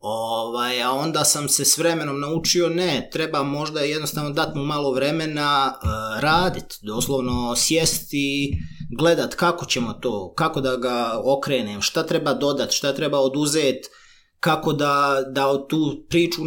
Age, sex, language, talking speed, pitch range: 30-49, male, Croatian, 140 wpm, 130-160 Hz